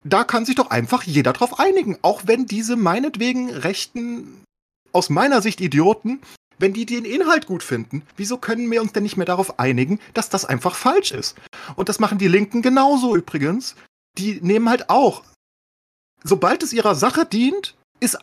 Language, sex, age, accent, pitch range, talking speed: German, male, 40-59, German, 150-235 Hz, 180 wpm